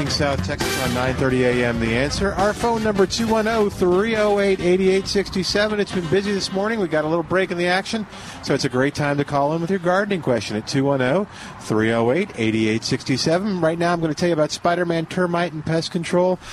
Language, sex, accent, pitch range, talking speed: English, male, American, 120-155 Hz, 185 wpm